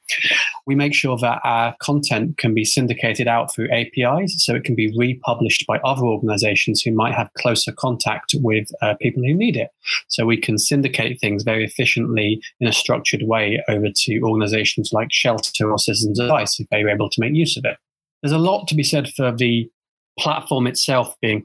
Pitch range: 115-145 Hz